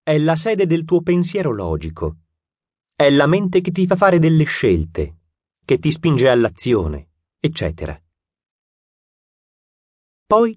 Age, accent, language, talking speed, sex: 30-49, native, Italian, 125 wpm, male